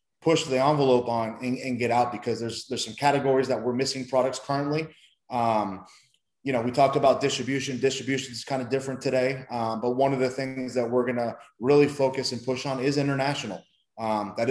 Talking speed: 205 wpm